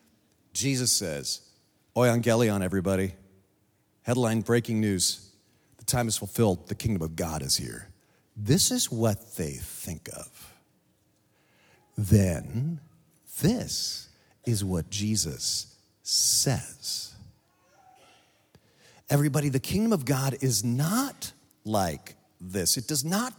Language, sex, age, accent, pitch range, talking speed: English, male, 50-69, American, 105-155 Hz, 105 wpm